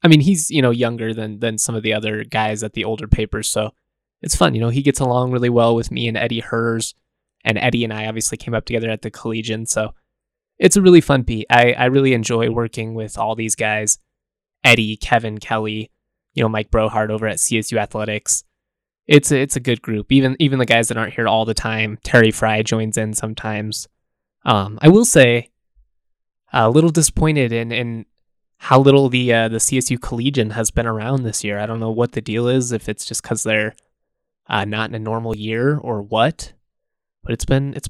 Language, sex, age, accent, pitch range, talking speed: English, male, 20-39, American, 110-125 Hz, 215 wpm